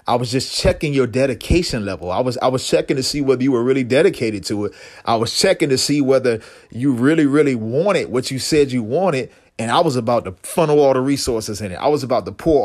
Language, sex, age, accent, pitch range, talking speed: English, male, 30-49, American, 115-155 Hz, 245 wpm